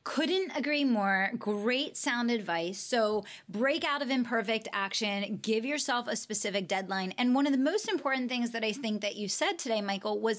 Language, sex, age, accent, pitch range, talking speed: English, female, 30-49, American, 195-235 Hz, 190 wpm